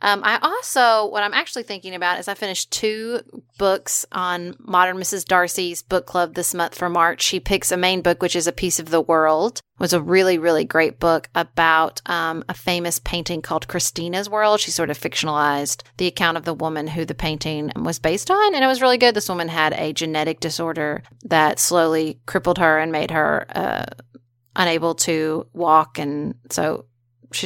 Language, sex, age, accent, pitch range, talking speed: English, female, 30-49, American, 160-190 Hz, 195 wpm